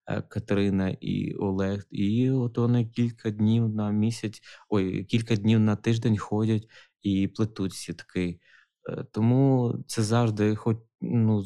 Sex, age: male, 20-39